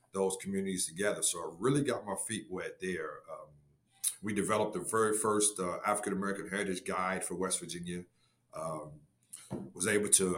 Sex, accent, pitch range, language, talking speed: male, American, 90-105 Hz, English, 170 wpm